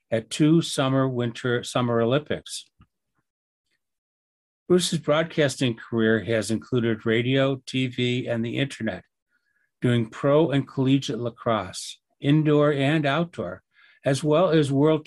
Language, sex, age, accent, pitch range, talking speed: English, male, 60-79, American, 120-165 Hz, 110 wpm